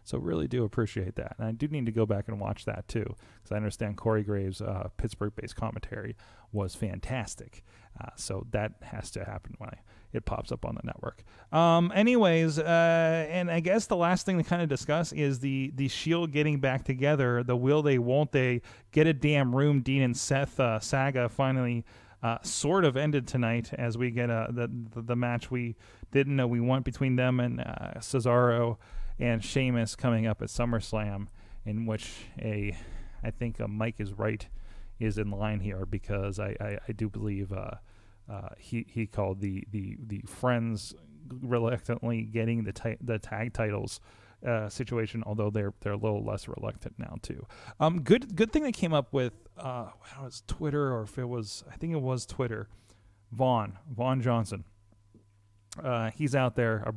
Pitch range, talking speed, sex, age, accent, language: 105-130 Hz, 190 wpm, male, 30-49, American, English